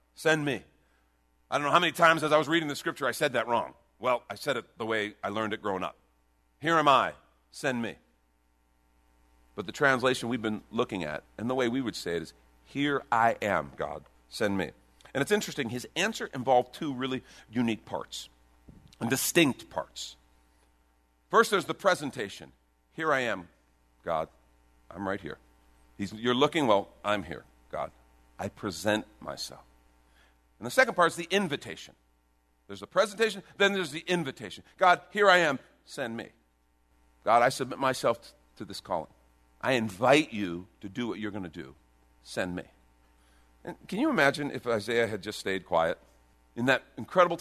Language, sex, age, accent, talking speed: English, male, 50-69, American, 175 wpm